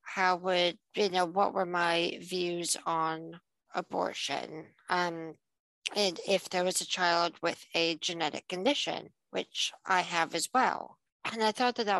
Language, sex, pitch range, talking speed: English, female, 165-195 Hz, 155 wpm